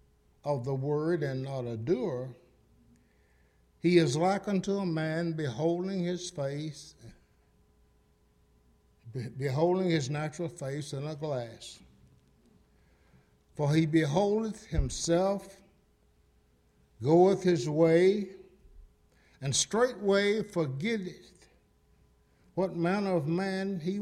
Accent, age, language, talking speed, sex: American, 60-79, English, 95 wpm, male